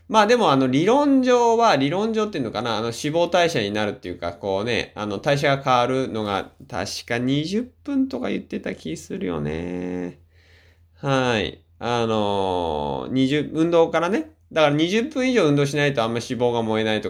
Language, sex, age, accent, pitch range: Japanese, male, 20-39, native, 90-135 Hz